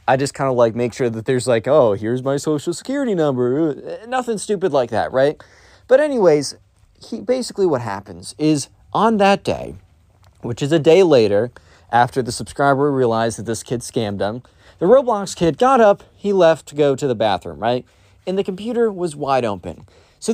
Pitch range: 115-180 Hz